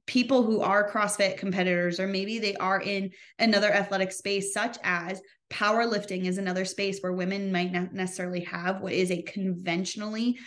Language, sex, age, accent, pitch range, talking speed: English, female, 20-39, American, 185-220 Hz, 165 wpm